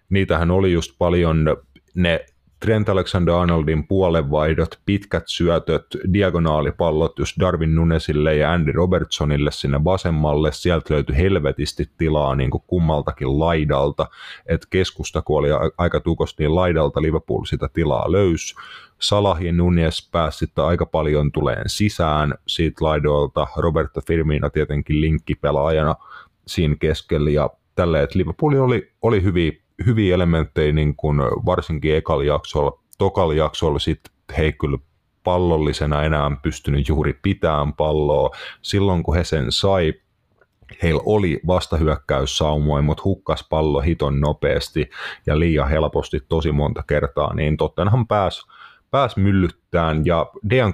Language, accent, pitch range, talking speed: Finnish, native, 75-90 Hz, 125 wpm